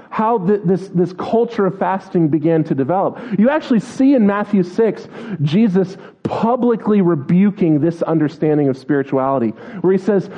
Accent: American